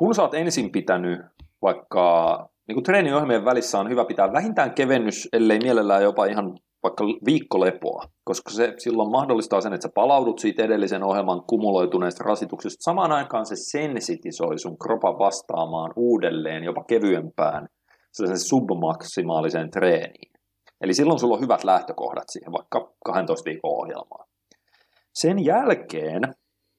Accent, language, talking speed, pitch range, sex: native, Finnish, 125 wpm, 95-120 Hz, male